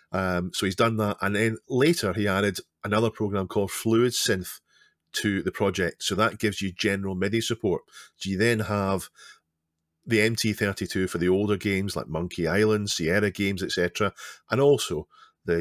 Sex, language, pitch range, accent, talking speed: male, English, 85-105 Hz, British, 175 wpm